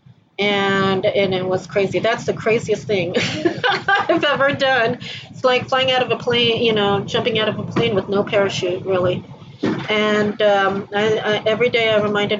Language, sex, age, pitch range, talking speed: English, female, 30-49, 190-230 Hz, 185 wpm